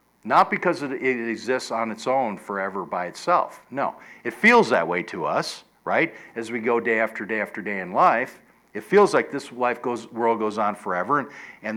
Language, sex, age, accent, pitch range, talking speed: English, male, 60-79, American, 115-140 Hz, 205 wpm